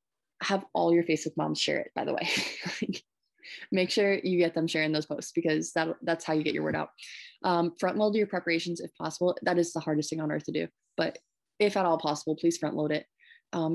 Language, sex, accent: English, female, American